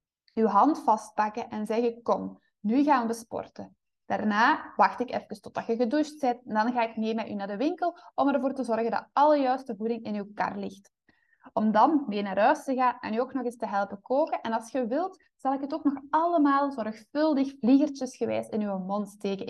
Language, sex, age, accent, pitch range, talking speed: Dutch, female, 20-39, Dutch, 210-270 Hz, 215 wpm